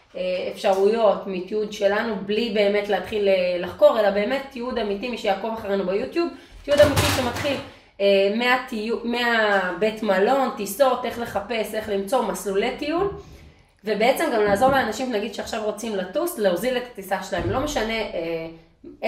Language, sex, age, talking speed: Hebrew, female, 20-39, 140 wpm